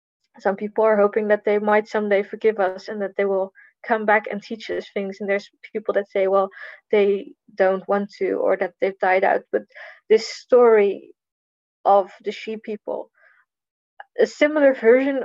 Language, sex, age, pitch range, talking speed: English, female, 20-39, 205-235 Hz, 175 wpm